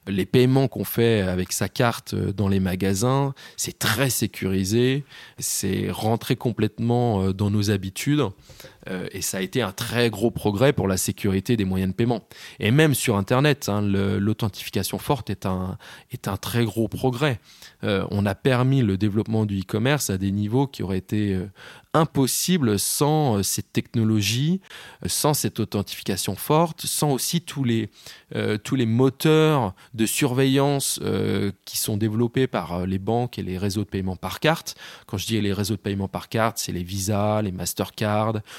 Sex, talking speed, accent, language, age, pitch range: male, 175 wpm, French, French, 20-39, 100-130 Hz